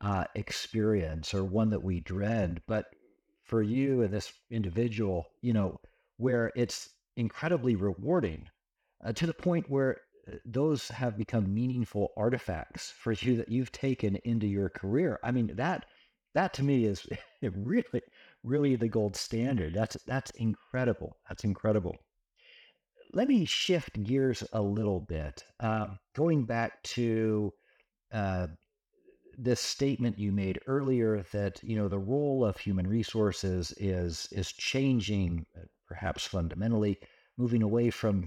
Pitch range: 95-120 Hz